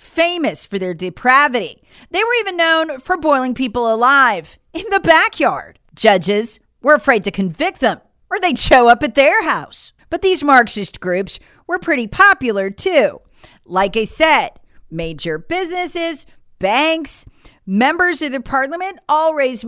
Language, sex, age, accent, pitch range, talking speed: English, female, 40-59, American, 205-320 Hz, 145 wpm